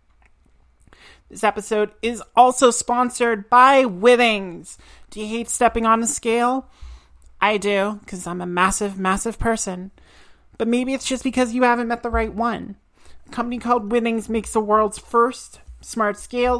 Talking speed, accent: 155 wpm, American